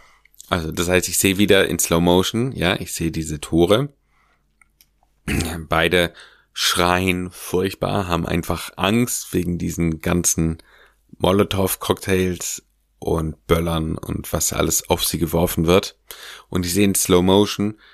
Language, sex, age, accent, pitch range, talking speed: German, male, 30-49, German, 85-95 Hz, 130 wpm